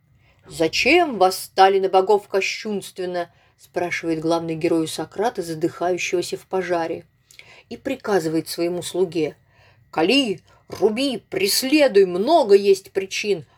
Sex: female